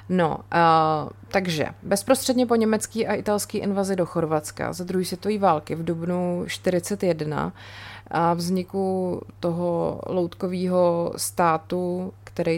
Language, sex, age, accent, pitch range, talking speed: Czech, female, 30-49, native, 155-185 Hz, 120 wpm